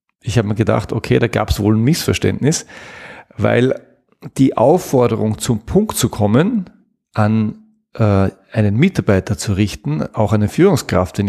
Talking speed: 155 wpm